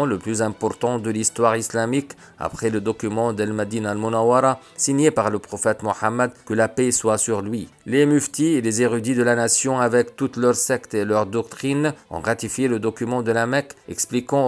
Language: French